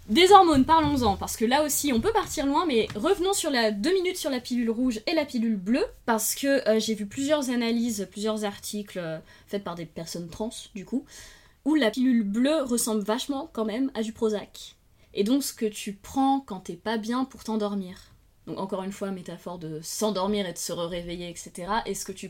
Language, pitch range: French, 180-250 Hz